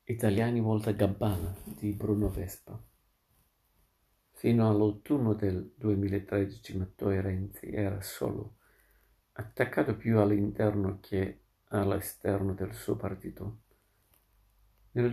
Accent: native